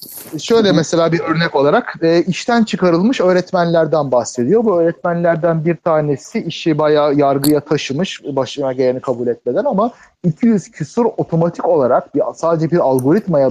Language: Turkish